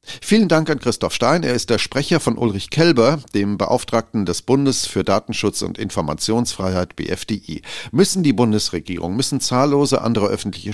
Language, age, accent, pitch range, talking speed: German, 40-59, German, 105-140 Hz, 155 wpm